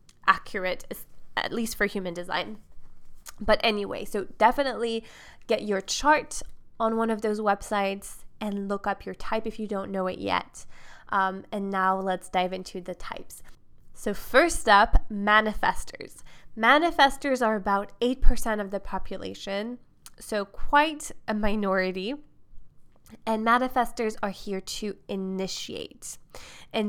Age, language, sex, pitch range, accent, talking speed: 20-39, English, female, 190-220 Hz, American, 135 wpm